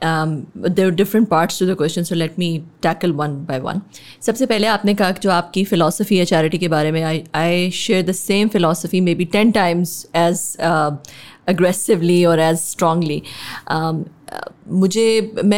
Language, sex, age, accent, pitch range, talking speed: English, female, 20-39, Indian, 175-225 Hz, 140 wpm